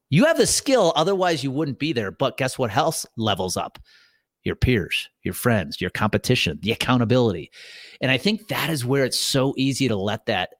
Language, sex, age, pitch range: English, male, 30-49, 115-150 Hz